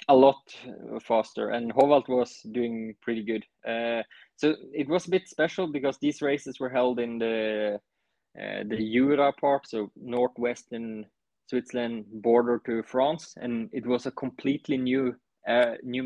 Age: 20-39